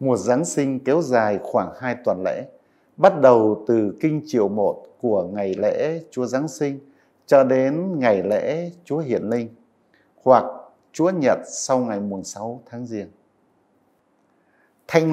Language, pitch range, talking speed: Vietnamese, 130-185 Hz, 145 wpm